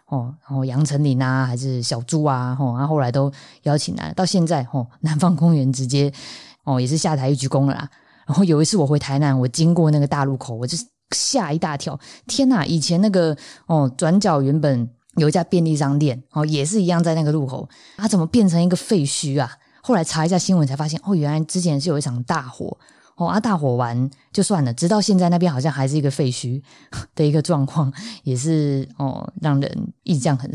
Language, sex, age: Chinese, female, 20-39